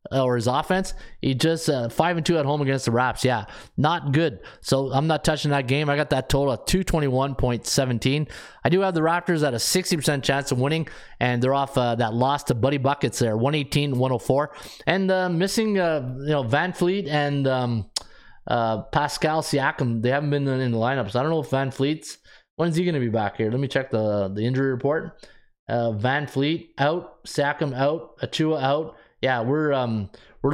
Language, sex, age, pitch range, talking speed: English, male, 20-39, 130-165 Hz, 205 wpm